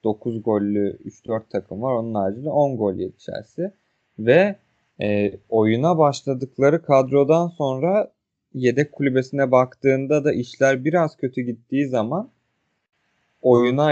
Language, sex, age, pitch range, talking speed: Turkish, male, 30-49, 105-130 Hz, 110 wpm